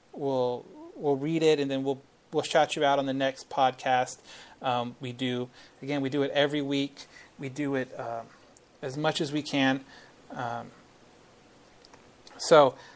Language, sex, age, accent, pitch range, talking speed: English, male, 30-49, American, 140-185 Hz, 160 wpm